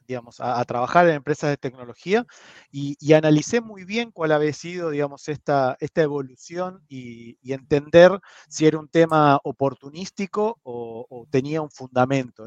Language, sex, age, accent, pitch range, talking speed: Spanish, male, 30-49, Argentinian, 135-180 Hz, 160 wpm